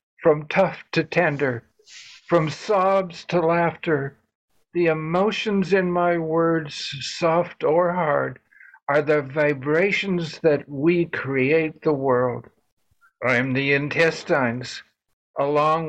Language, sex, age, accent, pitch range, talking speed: English, male, 60-79, American, 150-180 Hz, 110 wpm